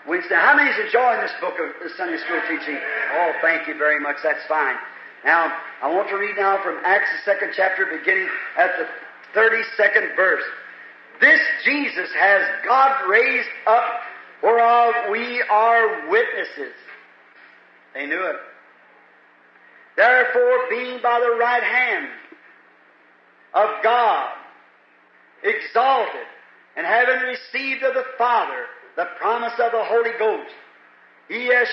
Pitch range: 220-310 Hz